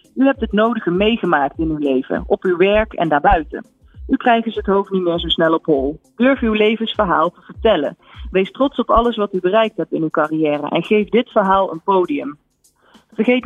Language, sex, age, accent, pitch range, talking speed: Dutch, female, 40-59, Dutch, 175-230 Hz, 205 wpm